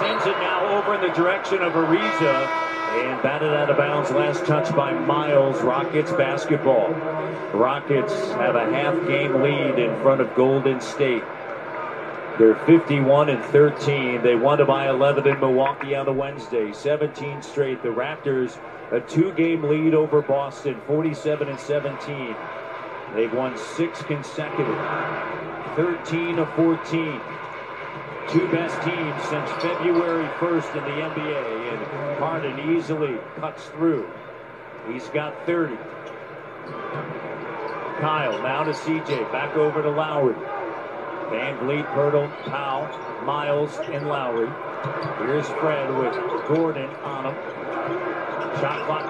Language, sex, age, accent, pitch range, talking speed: English, male, 40-59, American, 140-165 Hz, 125 wpm